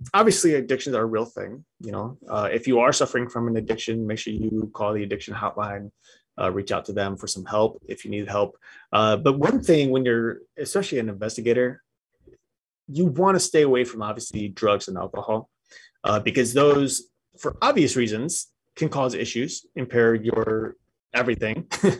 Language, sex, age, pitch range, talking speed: English, male, 30-49, 110-135 Hz, 180 wpm